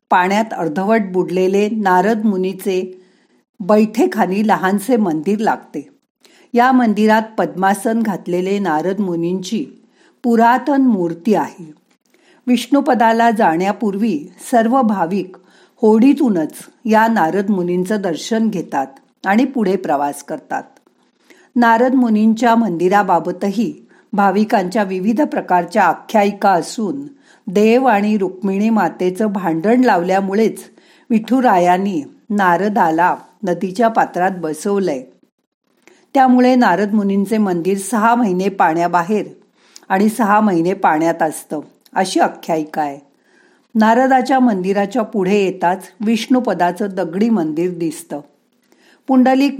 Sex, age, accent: female, 50-69, native